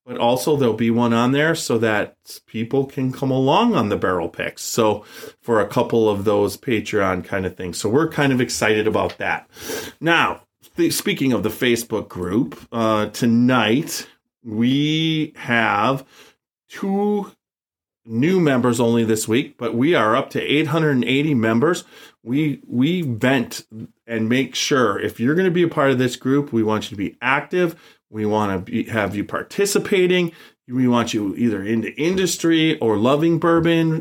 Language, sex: English, male